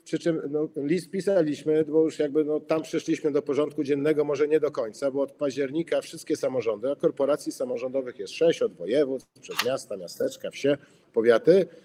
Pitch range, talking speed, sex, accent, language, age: 140-170 Hz, 175 wpm, male, native, Polish, 50-69